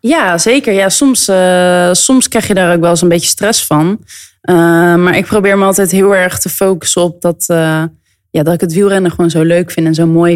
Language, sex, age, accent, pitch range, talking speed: Dutch, female, 20-39, Dutch, 170-215 Hz, 240 wpm